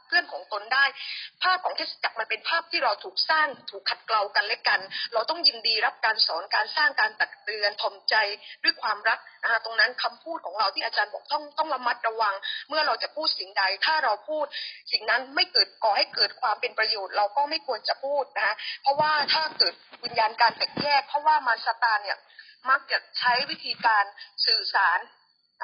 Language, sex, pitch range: Thai, female, 225-315 Hz